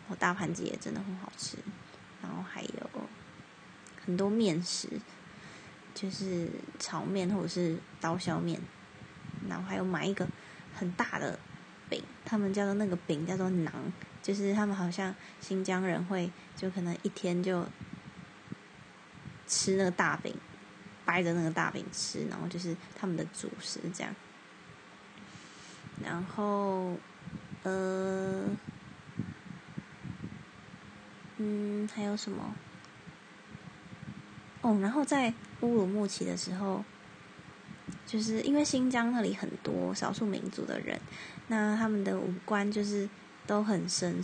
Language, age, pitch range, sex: Chinese, 20-39, 175-205 Hz, female